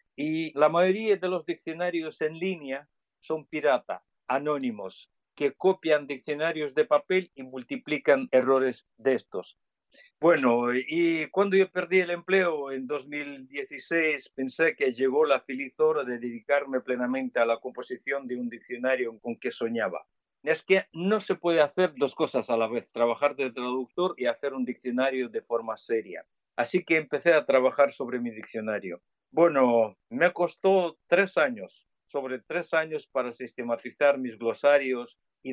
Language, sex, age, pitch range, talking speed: Spanish, male, 50-69, 125-160 Hz, 150 wpm